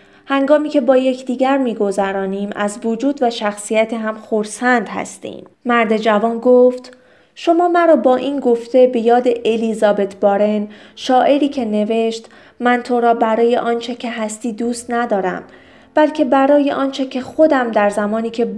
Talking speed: 140 wpm